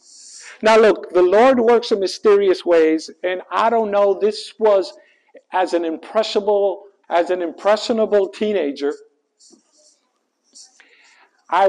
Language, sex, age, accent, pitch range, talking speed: English, male, 50-69, American, 170-245 Hz, 105 wpm